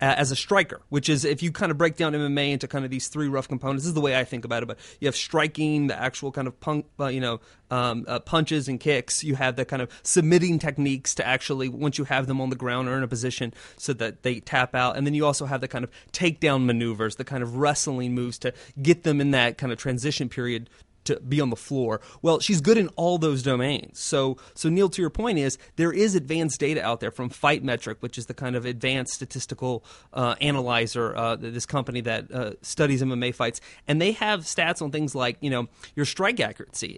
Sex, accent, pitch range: male, American, 125-160 Hz